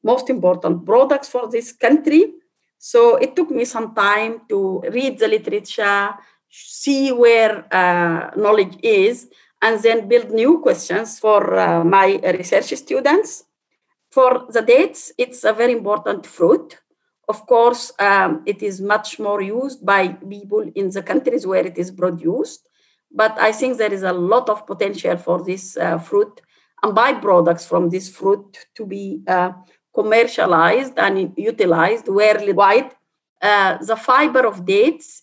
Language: English